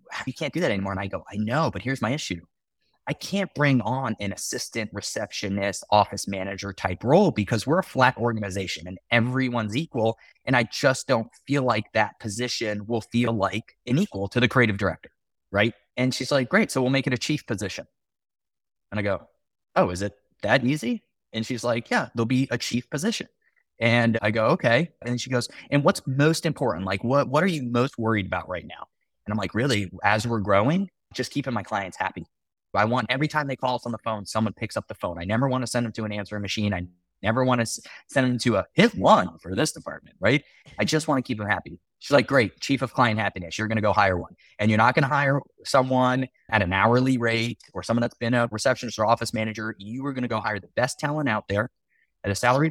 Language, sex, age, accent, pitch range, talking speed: English, male, 20-39, American, 105-130 Hz, 235 wpm